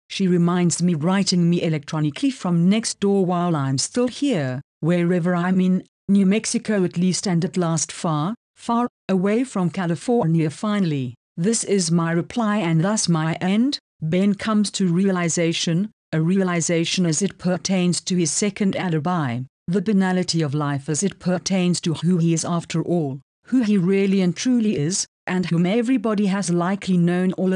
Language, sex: English, female